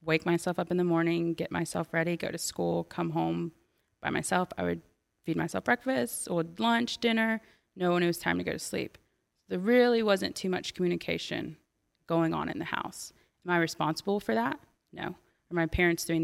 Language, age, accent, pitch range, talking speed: English, 20-39, American, 155-175 Hz, 200 wpm